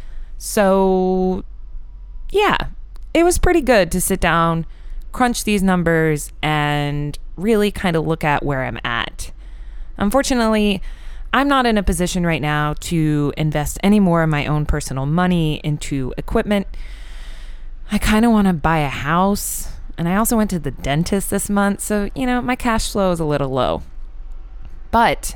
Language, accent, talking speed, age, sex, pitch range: English, American, 155 wpm, 20-39, female, 145-200 Hz